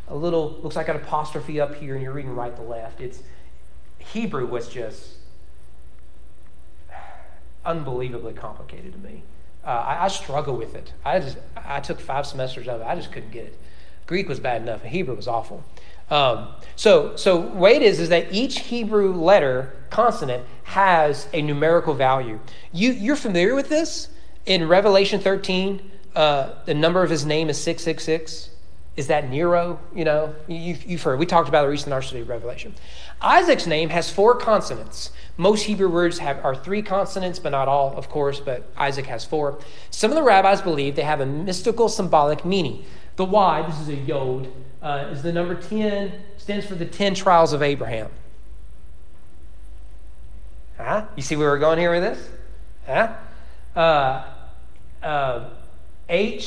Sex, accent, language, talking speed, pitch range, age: male, American, English, 170 wpm, 120-180 Hz, 30-49